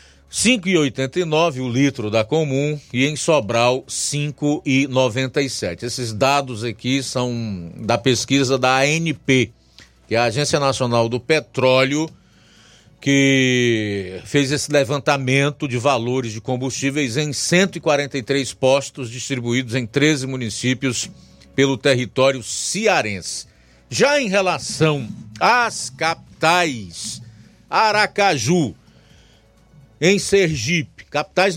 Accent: Brazilian